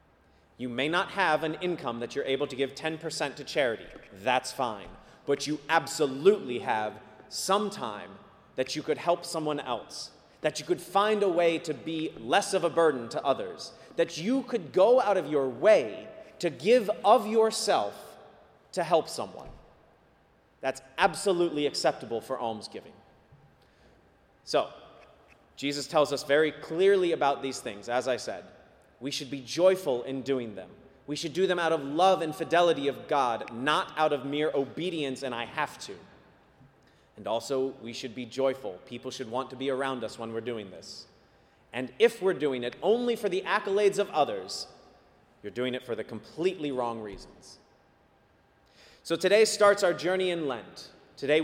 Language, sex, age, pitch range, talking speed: English, male, 30-49, 135-180 Hz, 170 wpm